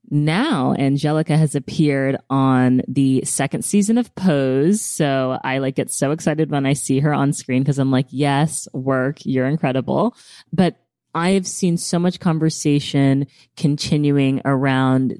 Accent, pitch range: American, 135-170 Hz